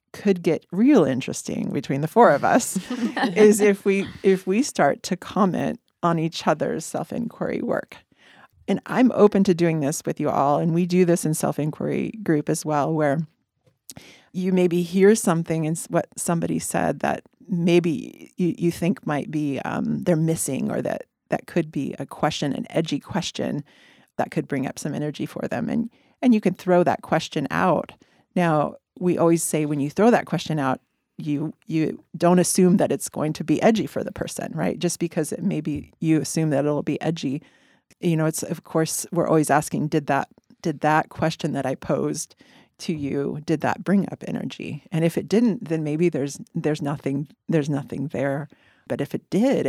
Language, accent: English, American